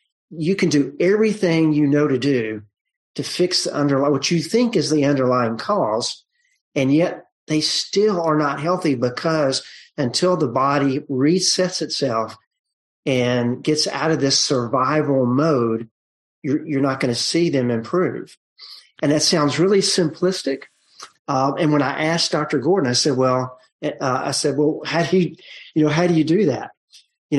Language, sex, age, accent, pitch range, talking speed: English, male, 40-59, American, 130-160 Hz, 170 wpm